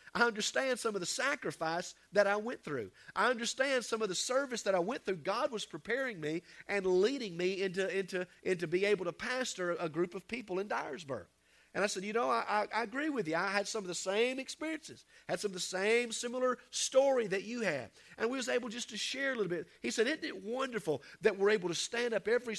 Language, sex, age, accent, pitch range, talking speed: English, male, 40-59, American, 175-260 Hz, 240 wpm